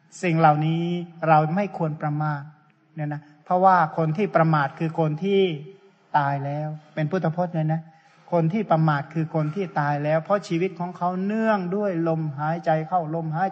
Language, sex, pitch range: Thai, male, 155-175 Hz